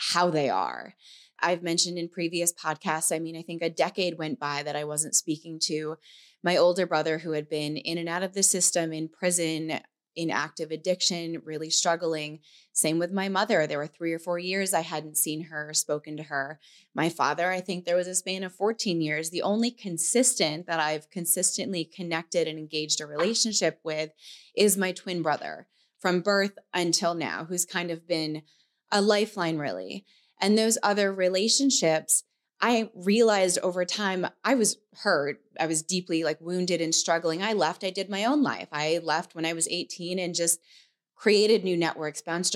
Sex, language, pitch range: female, English, 160-190 Hz